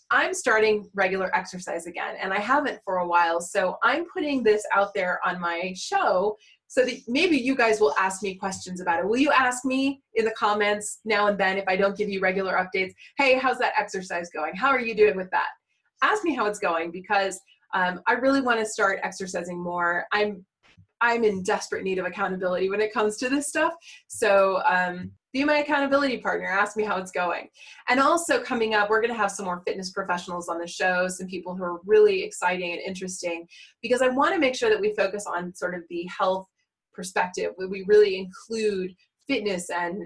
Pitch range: 185-240 Hz